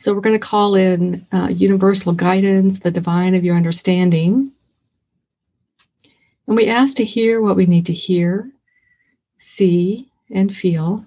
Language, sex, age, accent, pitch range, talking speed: English, female, 50-69, American, 175-200 Hz, 145 wpm